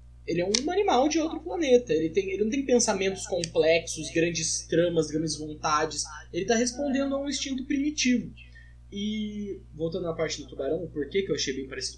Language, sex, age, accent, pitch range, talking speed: Portuguese, male, 10-29, Brazilian, 145-210 Hz, 190 wpm